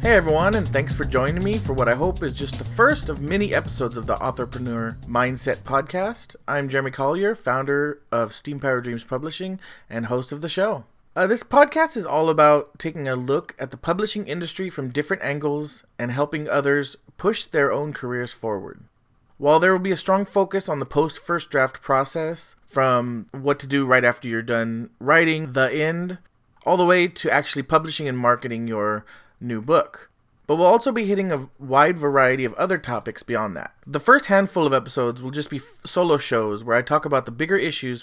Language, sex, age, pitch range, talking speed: English, male, 30-49, 120-165 Hz, 195 wpm